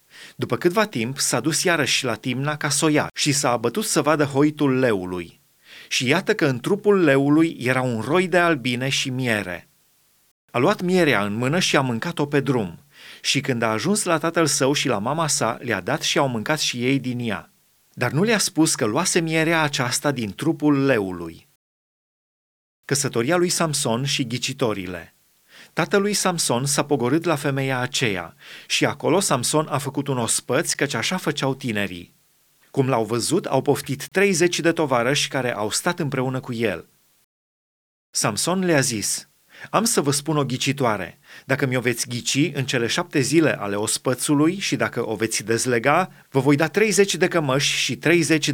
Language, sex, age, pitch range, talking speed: Romanian, male, 30-49, 120-160 Hz, 175 wpm